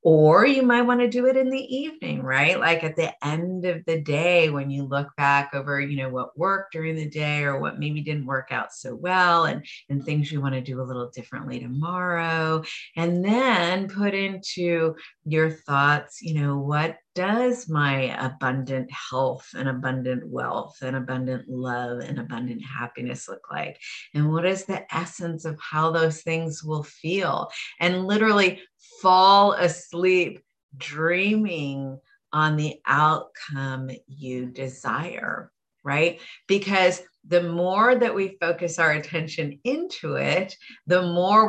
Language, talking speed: English, 155 wpm